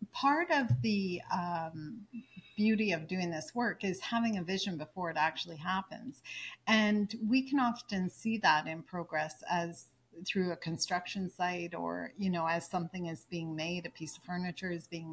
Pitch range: 170-200 Hz